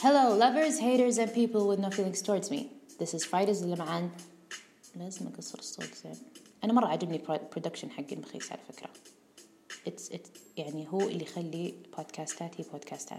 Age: 20-39